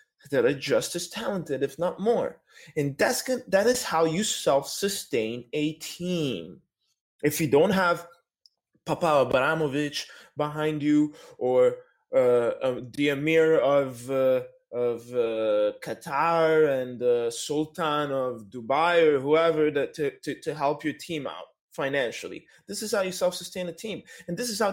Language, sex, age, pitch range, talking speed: English, male, 20-39, 145-215 Hz, 150 wpm